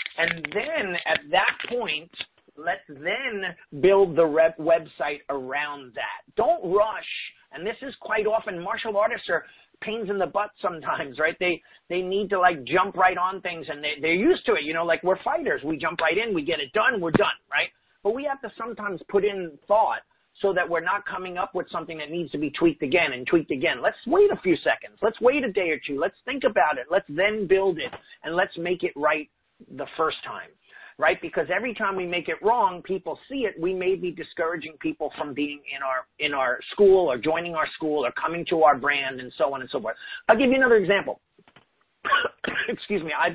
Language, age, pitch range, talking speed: English, 40-59, 160-210 Hz, 220 wpm